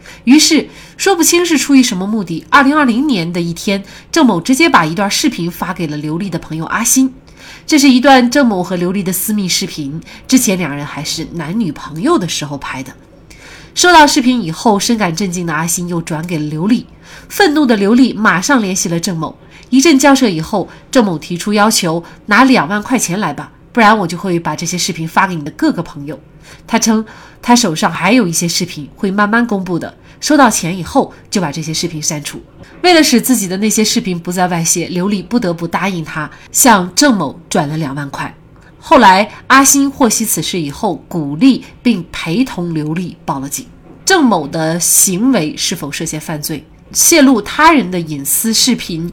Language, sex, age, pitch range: Chinese, female, 30-49, 165-245 Hz